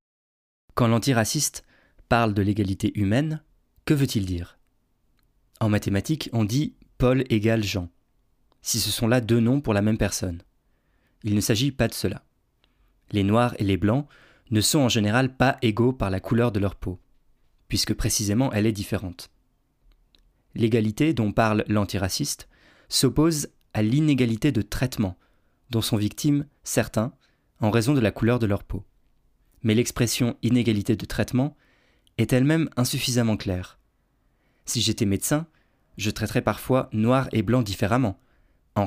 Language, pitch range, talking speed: French, 105-130 Hz, 145 wpm